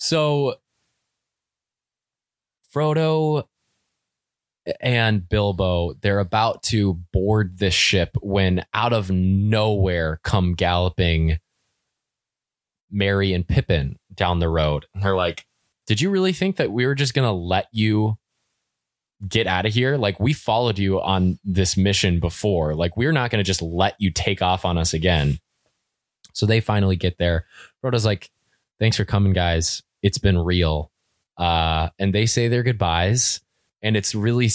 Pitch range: 90-110 Hz